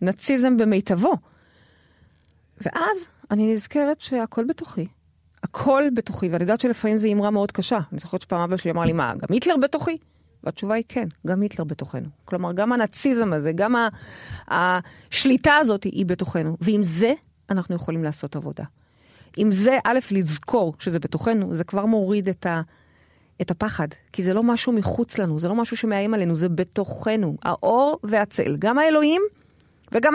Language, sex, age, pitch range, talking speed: Hebrew, female, 30-49, 185-275 Hz, 150 wpm